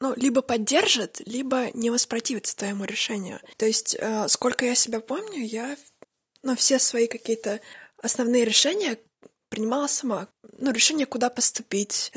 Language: Russian